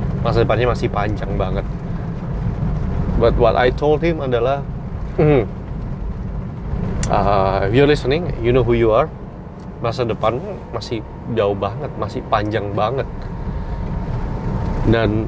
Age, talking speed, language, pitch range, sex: 20-39, 110 wpm, Indonesian, 110-135 Hz, male